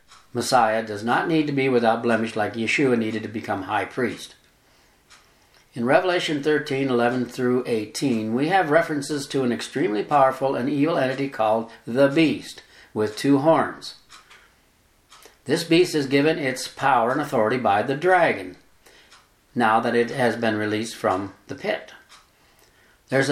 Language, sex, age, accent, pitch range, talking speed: English, male, 60-79, American, 115-140 Hz, 145 wpm